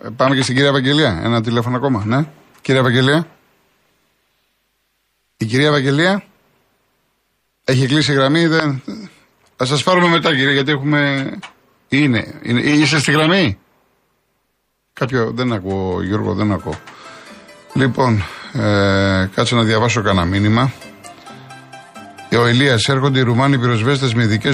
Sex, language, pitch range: male, Greek, 110-145 Hz